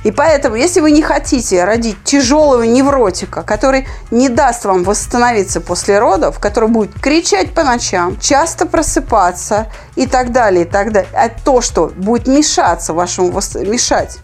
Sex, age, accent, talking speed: female, 30-49, native, 130 wpm